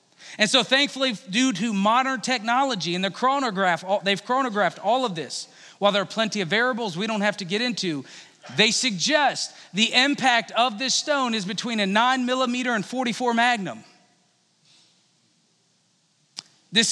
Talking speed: 155 wpm